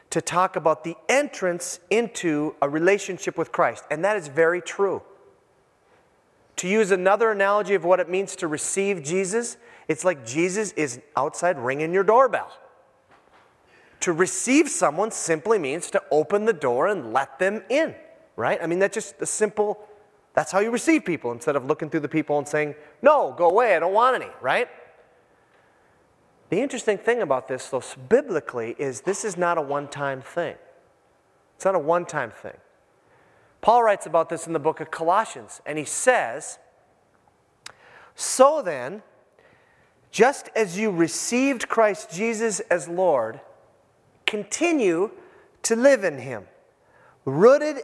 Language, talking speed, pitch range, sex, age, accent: English, 155 wpm, 155-220 Hz, male, 30-49, American